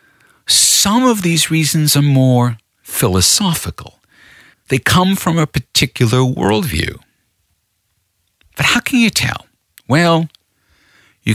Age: 50-69